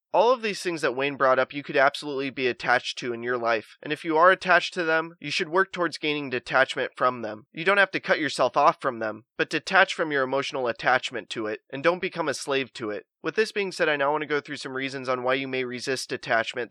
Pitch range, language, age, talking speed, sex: 125-165 Hz, English, 20-39, 265 wpm, male